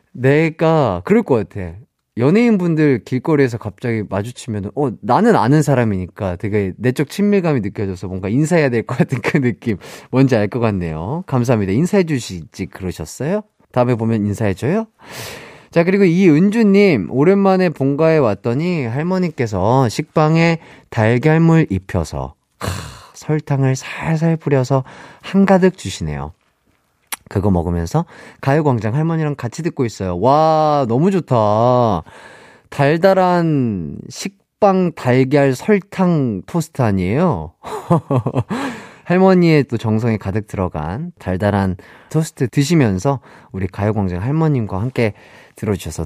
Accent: native